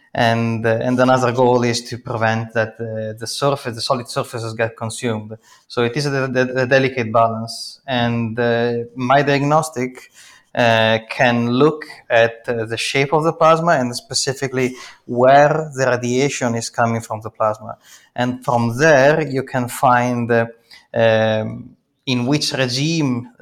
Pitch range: 115-130 Hz